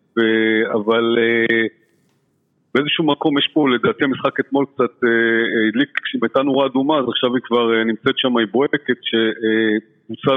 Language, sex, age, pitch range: Hebrew, male, 50-69, 115-140 Hz